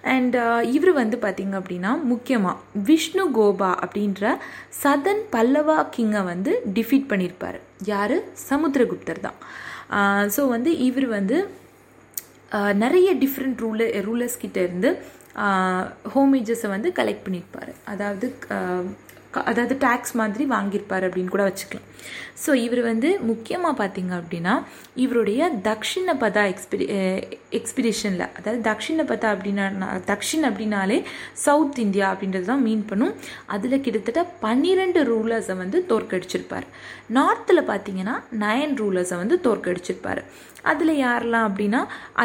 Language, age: Tamil, 20-39